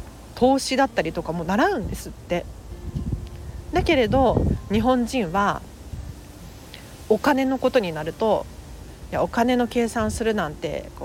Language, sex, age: Japanese, female, 40-59